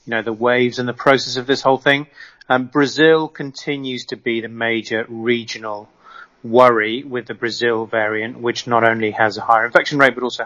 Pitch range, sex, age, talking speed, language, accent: 115-135 Hz, male, 30-49, 195 wpm, English, British